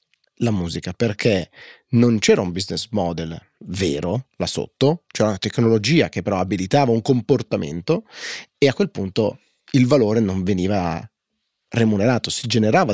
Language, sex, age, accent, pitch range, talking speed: Italian, male, 30-49, native, 90-120 Hz, 140 wpm